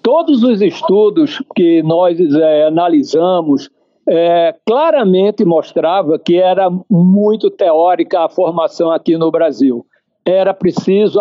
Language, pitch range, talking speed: Portuguese, 175-250 Hz, 110 wpm